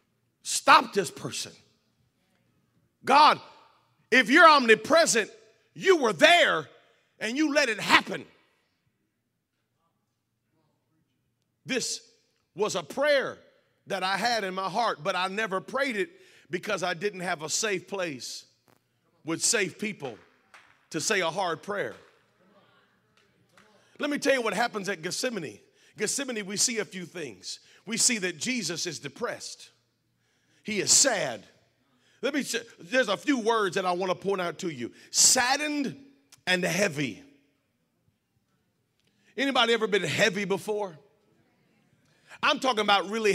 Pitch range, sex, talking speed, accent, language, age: 180-245 Hz, male, 130 wpm, American, English, 40-59